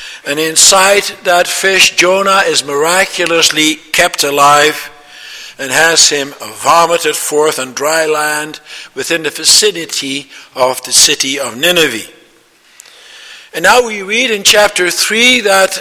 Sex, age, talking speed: male, 60-79, 125 wpm